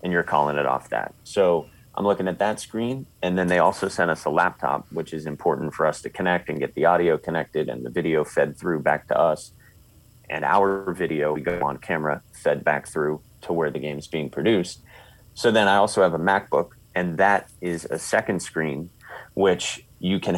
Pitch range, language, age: 80-95 Hz, English, 30-49